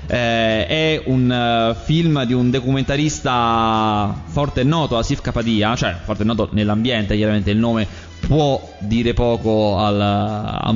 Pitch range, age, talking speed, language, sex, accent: 110-145 Hz, 20-39, 145 wpm, Italian, male, native